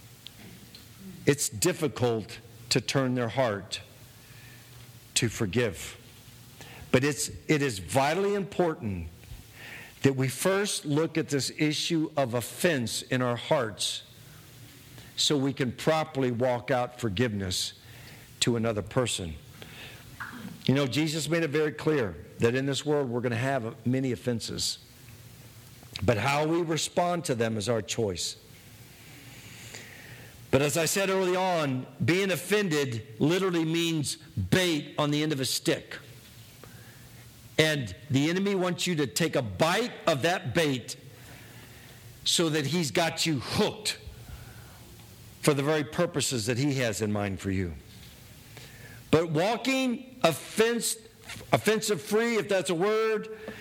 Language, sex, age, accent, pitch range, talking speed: English, male, 50-69, American, 120-165 Hz, 130 wpm